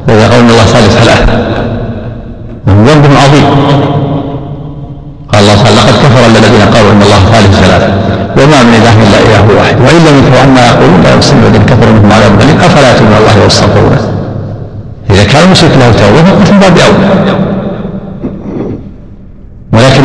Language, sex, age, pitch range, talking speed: Arabic, male, 60-79, 115-140 Hz, 85 wpm